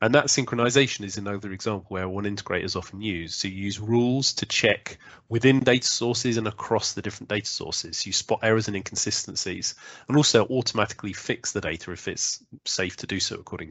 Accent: British